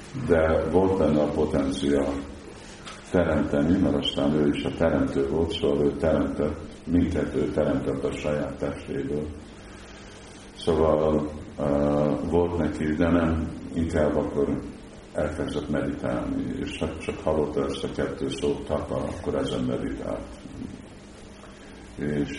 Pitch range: 70-80 Hz